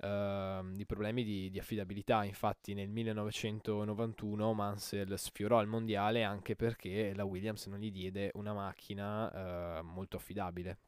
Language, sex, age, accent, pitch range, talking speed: Italian, male, 20-39, native, 100-115 Hz, 140 wpm